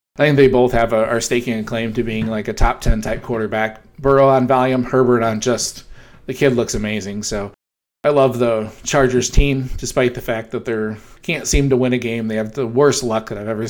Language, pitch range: English, 110-130 Hz